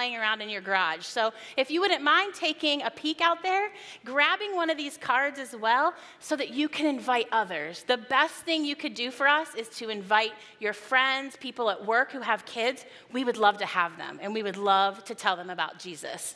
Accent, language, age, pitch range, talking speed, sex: American, English, 30-49, 210-280 Hz, 225 wpm, female